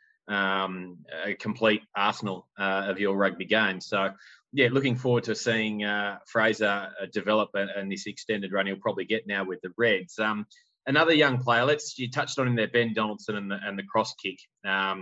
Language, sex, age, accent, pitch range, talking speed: English, male, 20-39, Australian, 100-120 Hz, 195 wpm